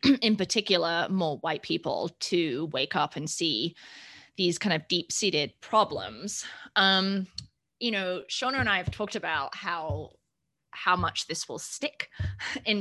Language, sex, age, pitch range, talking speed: English, female, 20-39, 170-210 Hz, 145 wpm